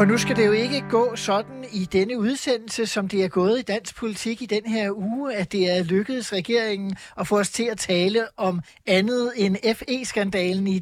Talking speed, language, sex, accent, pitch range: 210 wpm, Danish, male, native, 175-225 Hz